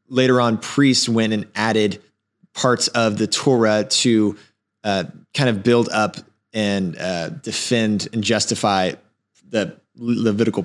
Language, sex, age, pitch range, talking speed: English, male, 20-39, 105-130 Hz, 130 wpm